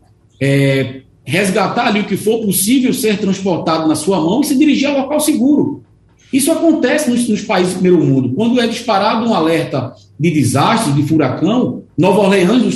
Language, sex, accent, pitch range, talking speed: Portuguese, male, Brazilian, 165-240 Hz, 175 wpm